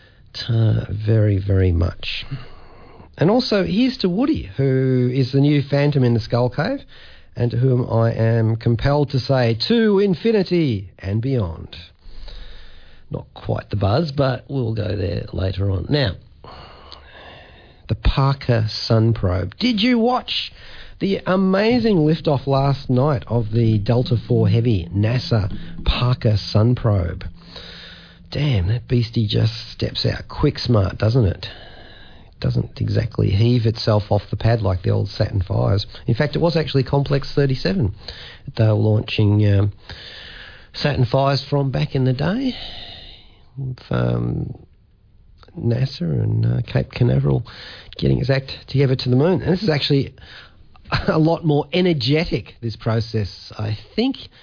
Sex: male